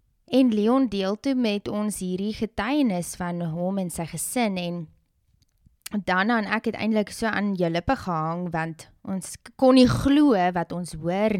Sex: female